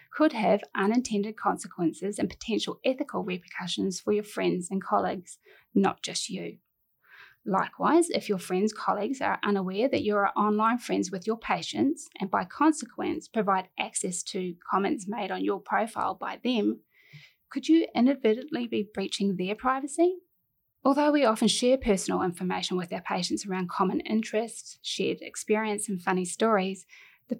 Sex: female